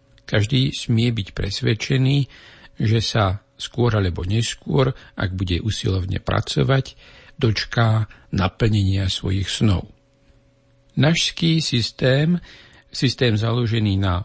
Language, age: Slovak, 60-79